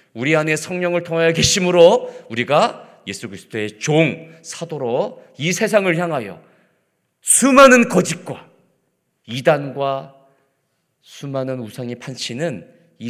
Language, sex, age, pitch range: Korean, male, 40-59, 115-175 Hz